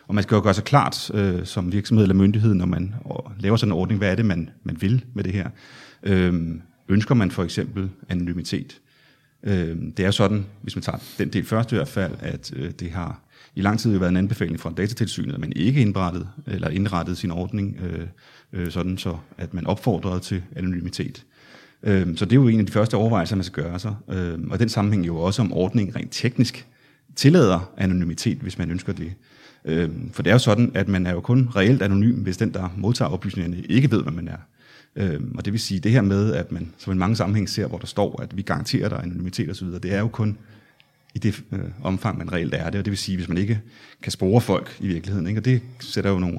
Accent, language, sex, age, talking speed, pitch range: native, Danish, male, 30-49, 235 wpm, 90-110 Hz